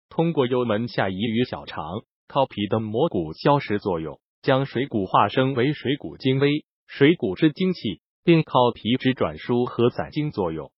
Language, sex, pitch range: Chinese, male, 120-150 Hz